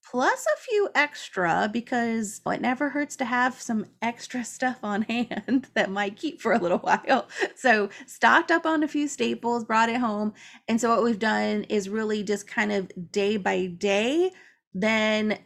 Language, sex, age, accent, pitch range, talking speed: English, female, 20-39, American, 205-290 Hz, 180 wpm